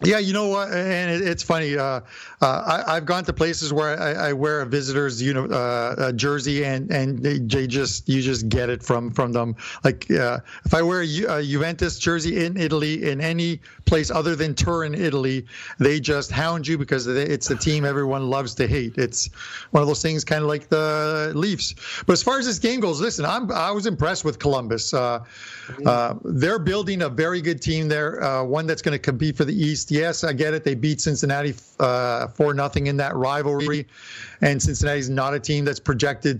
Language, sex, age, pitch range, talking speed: English, male, 50-69, 135-160 Hz, 215 wpm